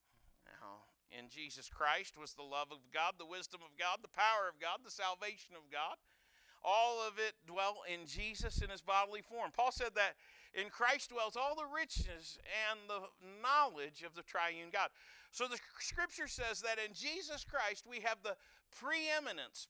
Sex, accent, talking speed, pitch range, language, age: male, American, 175 wpm, 175-270 Hz, English, 50-69